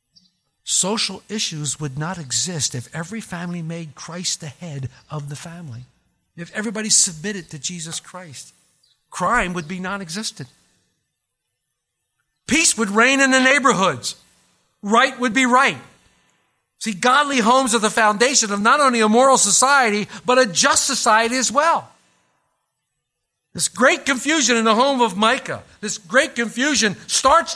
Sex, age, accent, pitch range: male, 50-69, American, 185-265 Hz